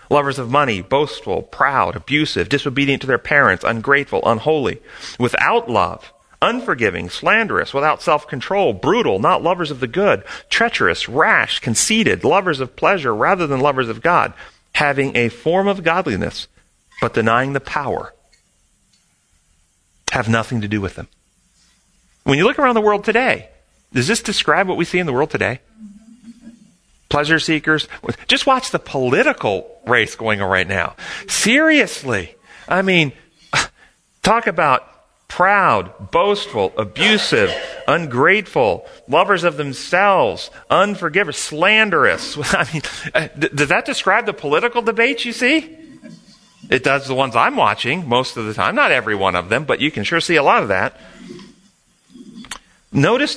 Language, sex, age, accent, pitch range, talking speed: English, male, 40-59, American, 135-220 Hz, 145 wpm